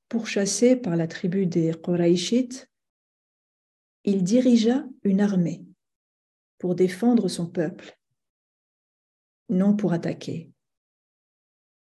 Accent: French